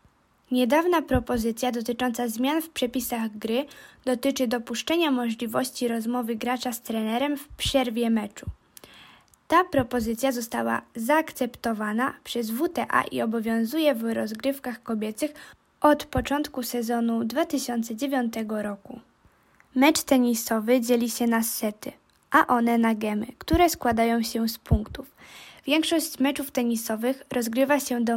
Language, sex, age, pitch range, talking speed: Polish, female, 20-39, 230-280 Hz, 115 wpm